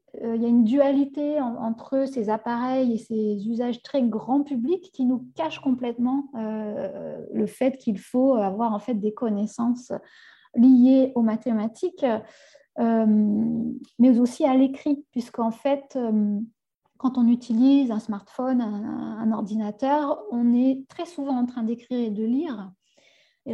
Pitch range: 220-270 Hz